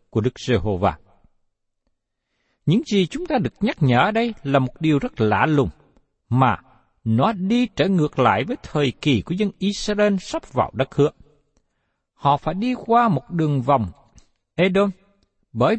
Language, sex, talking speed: Vietnamese, male, 155 wpm